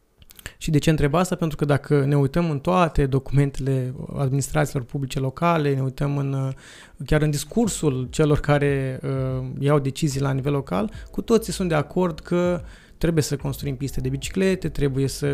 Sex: male